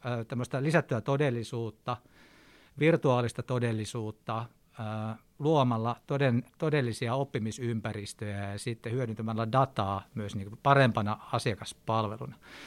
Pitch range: 110-135 Hz